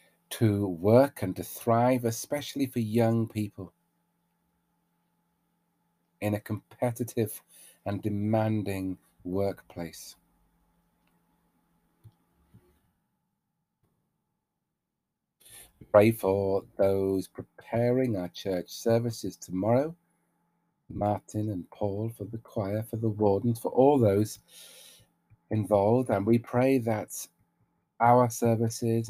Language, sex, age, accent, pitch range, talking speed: English, male, 40-59, British, 95-120 Hz, 85 wpm